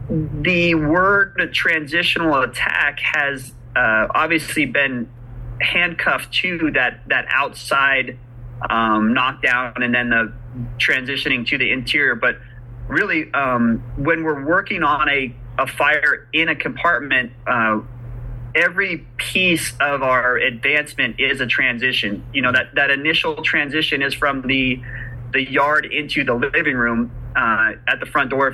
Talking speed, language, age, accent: 135 wpm, English, 30-49, American